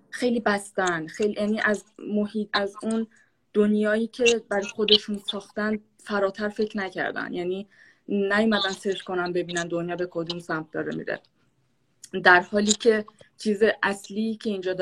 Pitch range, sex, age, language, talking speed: 175-210 Hz, female, 20-39, Persian, 140 wpm